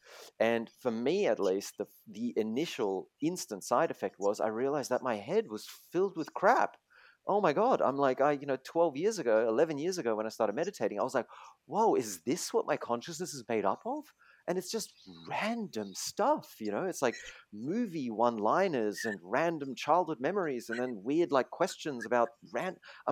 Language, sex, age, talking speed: English, male, 30-49, 195 wpm